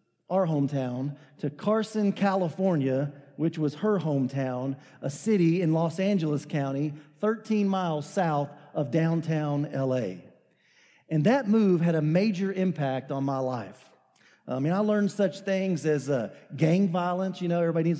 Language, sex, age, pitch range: English, male, 40-59, 150-195 Hz